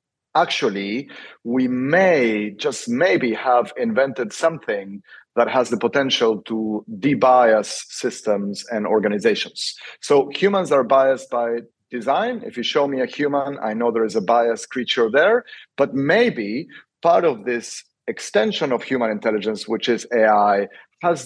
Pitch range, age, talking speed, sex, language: 110-135 Hz, 40-59, 140 wpm, male, English